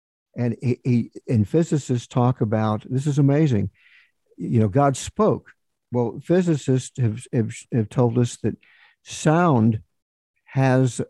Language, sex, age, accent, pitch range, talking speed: English, male, 60-79, American, 115-140 Hz, 130 wpm